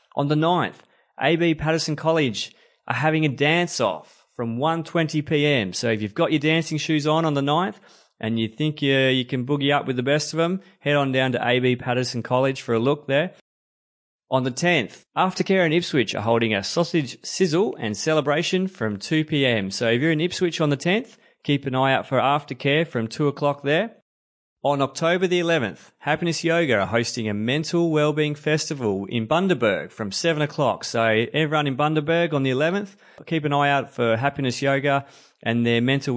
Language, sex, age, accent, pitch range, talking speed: English, male, 30-49, Australian, 125-160 Hz, 190 wpm